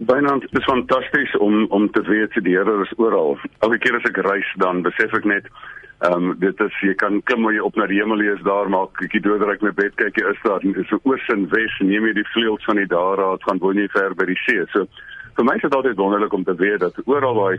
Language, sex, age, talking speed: English, male, 50-69, 250 wpm